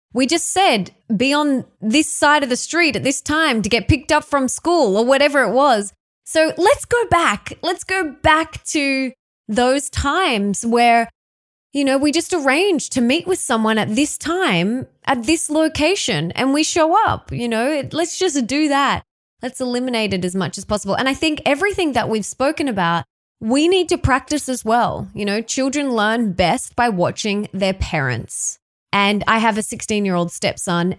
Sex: female